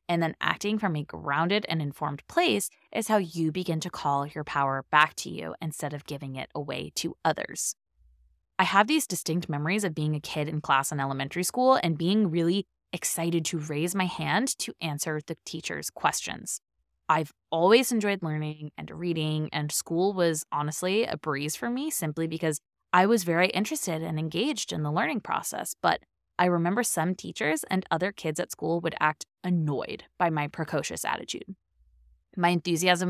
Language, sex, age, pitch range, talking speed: English, female, 20-39, 150-190 Hz, 180 wpm